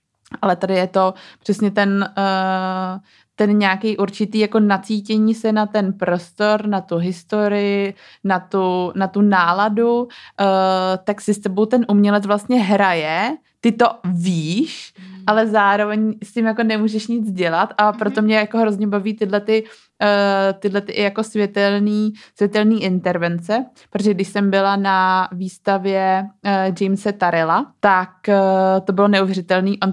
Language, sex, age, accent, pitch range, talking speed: Czech, female, 20-39, native, 185-215 Hz, 130 wpm